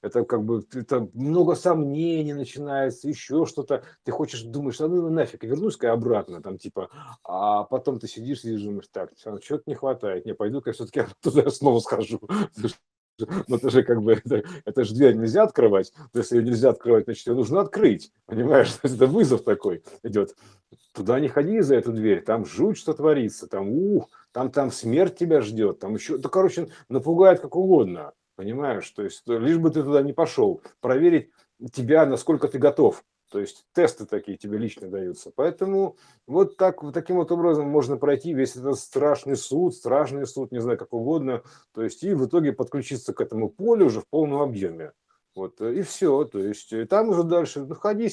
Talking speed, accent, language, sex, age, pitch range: 175 wpm, native, Russian, male, 50-69, 120-170 Hz